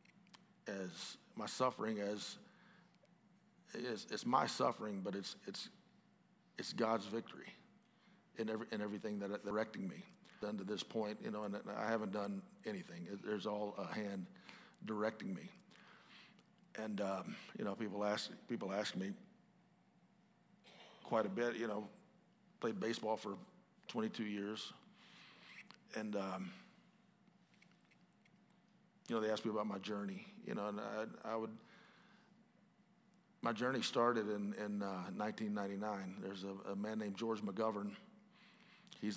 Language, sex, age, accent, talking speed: English, male, 50-69, American, 140 wpm